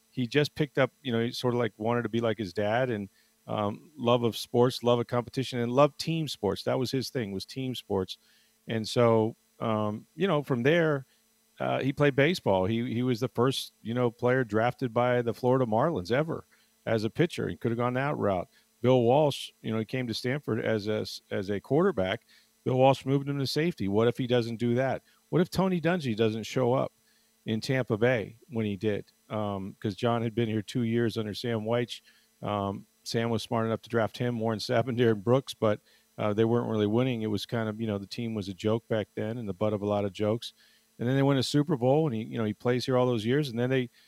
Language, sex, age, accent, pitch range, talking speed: English, male, 40-59, American, 110-130 Hz, 240 wpm